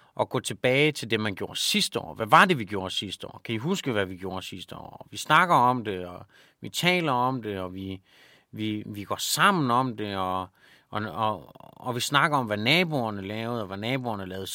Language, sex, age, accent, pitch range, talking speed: Danish, male, 30-49, native, 100-140 Hz, 225 wpm